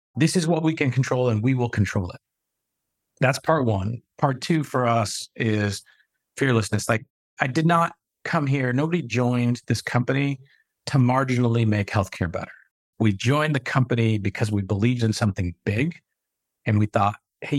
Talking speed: 165 wpm